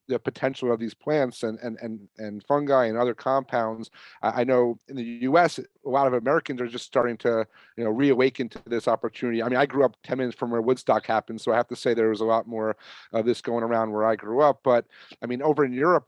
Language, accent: English, American